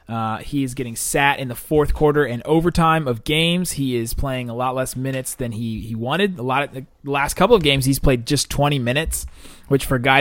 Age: 30-49